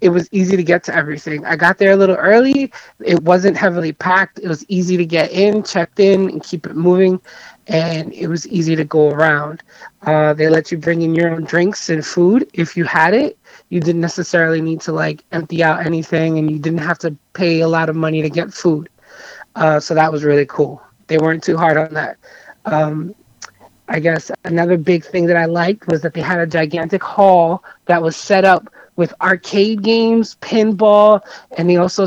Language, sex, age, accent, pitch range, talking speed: English, male, 20-39, American, 160-195 Hz, 210 wpm